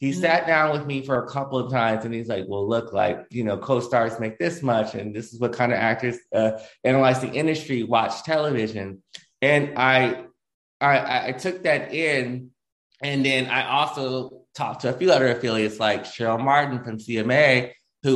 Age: 20-39